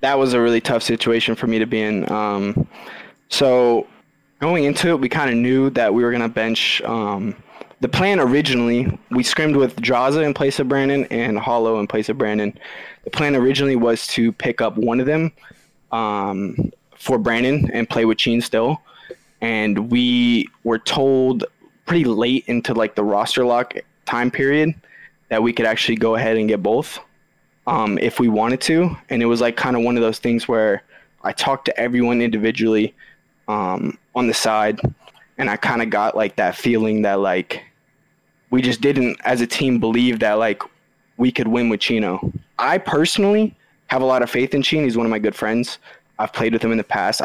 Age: 20-39